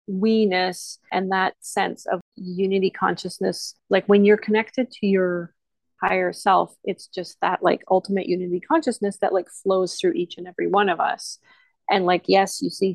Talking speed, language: 170 wpm, English